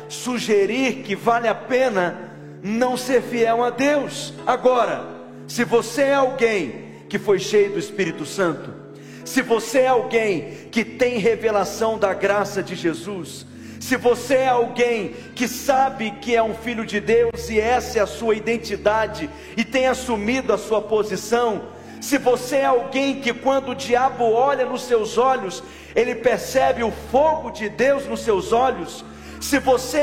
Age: 40-59